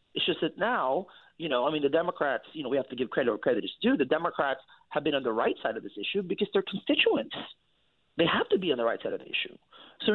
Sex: male